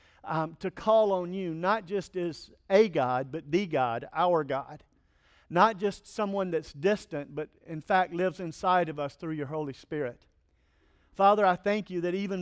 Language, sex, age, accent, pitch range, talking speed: English, male, 50-69, American, 150-190 Hz, 180 wpm